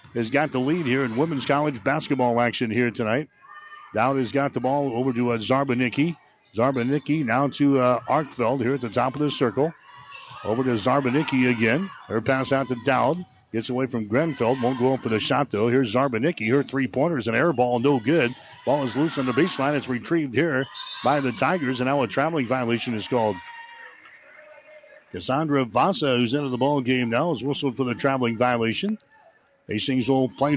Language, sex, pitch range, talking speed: English, male, 125-145 Hz, 195 wpm